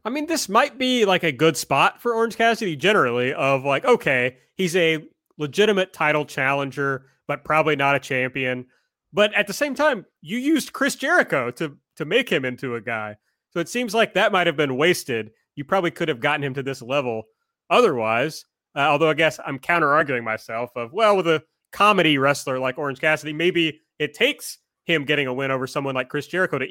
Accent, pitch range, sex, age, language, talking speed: American, 135-195 Hz, male, 30-49, English, 205 wpm